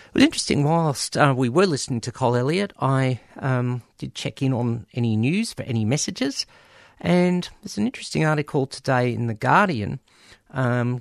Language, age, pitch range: English, 50-69, 110-150 Hz